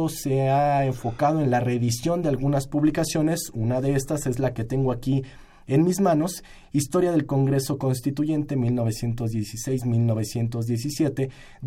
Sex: male